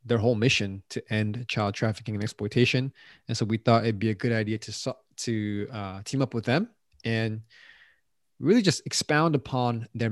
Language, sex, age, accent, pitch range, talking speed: English, male, 20-39, American, 110-135 Hz, 185 wpm